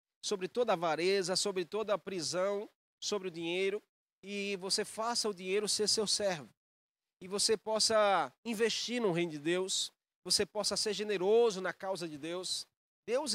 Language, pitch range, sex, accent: Portuguese, 175-205 Hz, male, Brazilian